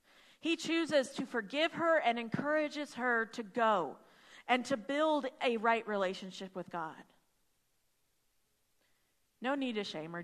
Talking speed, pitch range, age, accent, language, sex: 135 wpm, 210-270 Hz, 40-59, American, English, female